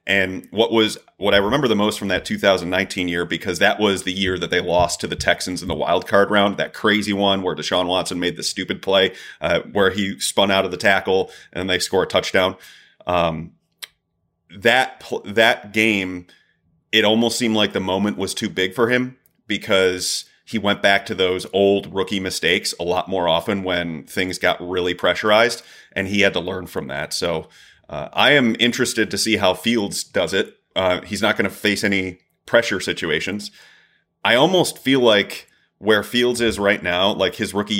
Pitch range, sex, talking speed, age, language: 90-105 Hz, male, 195 wpm, 30-49, English